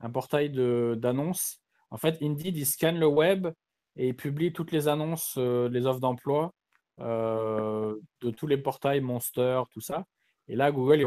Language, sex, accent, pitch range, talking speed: French, male, French, 115-150 Hz, 175 wpm